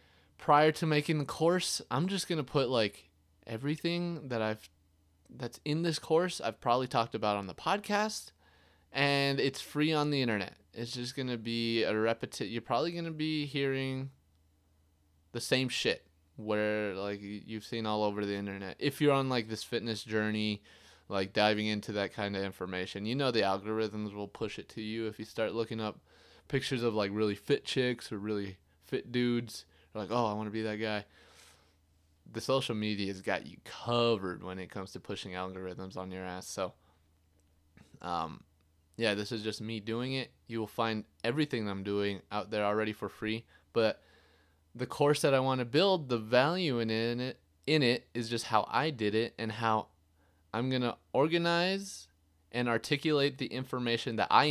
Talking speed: 185 wpm